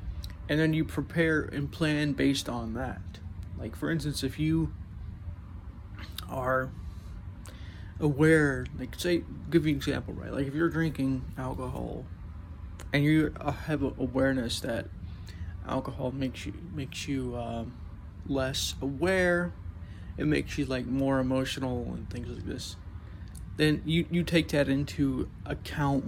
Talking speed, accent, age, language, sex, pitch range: 135 wpm, American, 20-39, English, male, 90-135 Hz